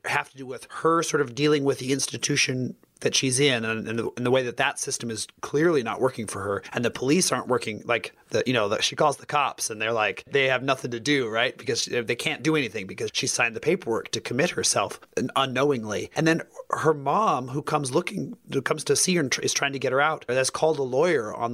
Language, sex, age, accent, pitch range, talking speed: English, male, 30-49, American, 120-155 Hz, 250 wpm